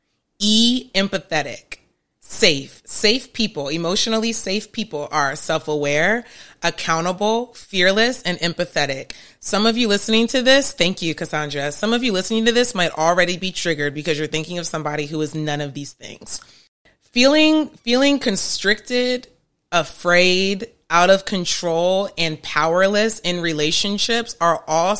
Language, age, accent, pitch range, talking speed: English, 30-49, American, 150-195 Hz, 135 wpm